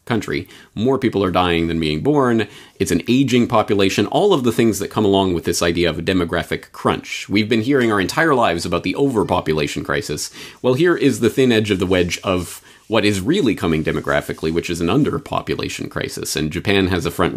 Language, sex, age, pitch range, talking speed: English, male, 30-49, 80-110 Hz, 210 wpm